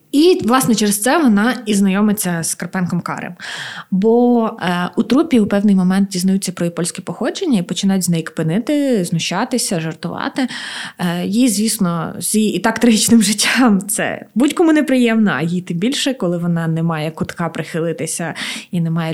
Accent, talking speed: native, 170 wpm